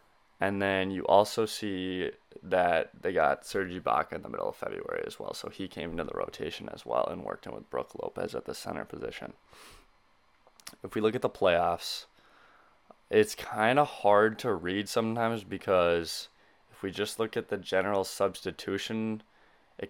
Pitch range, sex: 95-110 Hz, male